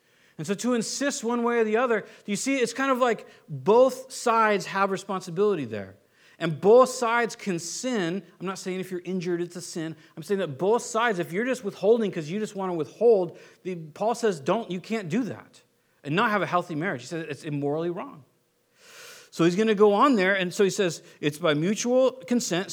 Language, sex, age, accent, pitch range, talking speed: English, male, 40-59, American, 170-230 Hz, 215 wpm